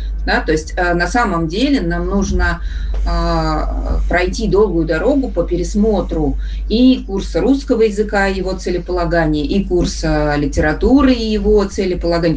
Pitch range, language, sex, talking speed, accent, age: 160-220 Hz, Russian, female, 120 wpm, native, 30-49